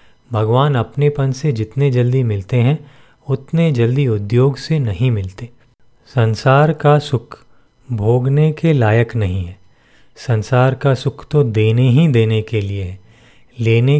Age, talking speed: 40-59, 135 wpm